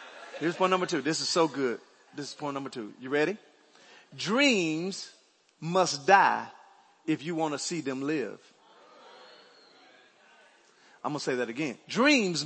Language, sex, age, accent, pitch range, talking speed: English, male, 40-59, American, 185-310 Hz, 155 wpm